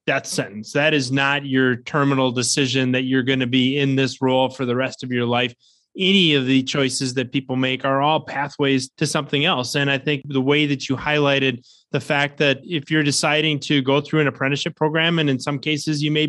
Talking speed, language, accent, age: 225 wpm, English, American, 20-39